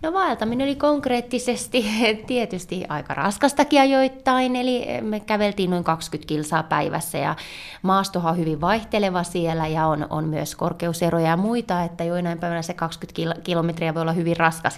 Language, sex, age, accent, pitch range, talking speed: Finnish, female, 20-39, native, 170-215 Hz, 155 wpm